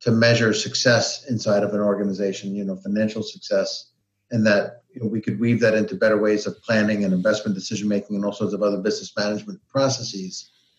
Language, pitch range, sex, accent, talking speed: English, 105-120 Hz, male, American, 195 wpm